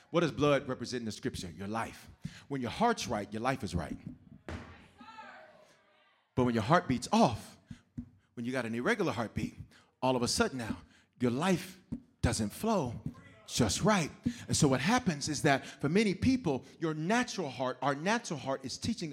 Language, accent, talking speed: English, American, 180 wpm